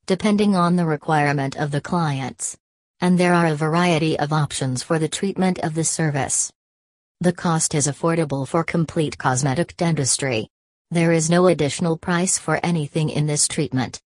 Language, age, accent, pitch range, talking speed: English, 40-59, American, 145-175 Hz, 160 wpm